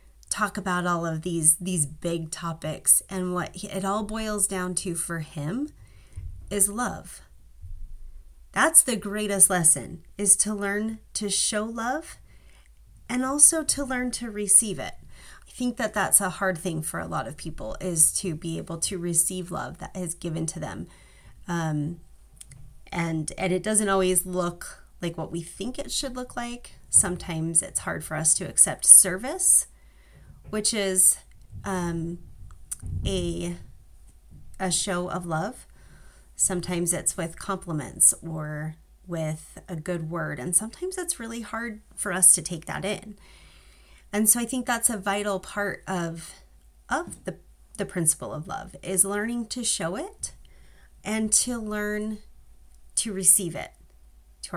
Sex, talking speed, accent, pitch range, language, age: female, 155 wpm, American, 150-205 Hz, English, 30-49